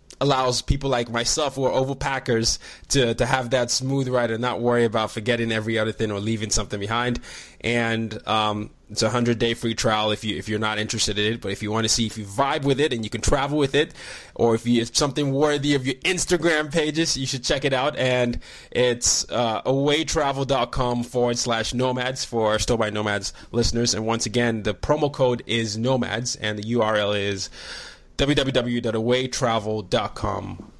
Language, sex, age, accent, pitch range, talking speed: English, male, 20-39, American, 110-135 Hz, 195 wpm